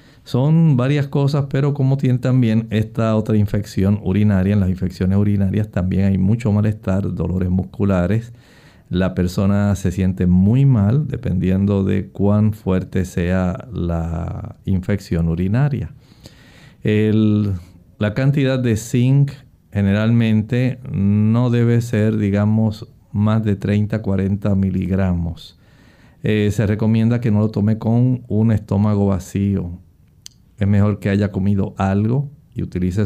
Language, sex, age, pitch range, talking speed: Spanish, male, 50-69, 95-120 Hz, 125 wpm